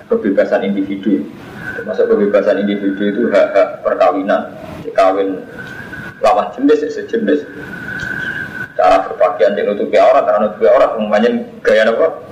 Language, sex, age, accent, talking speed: Indonesian, male, 20-39, native, 100 wpm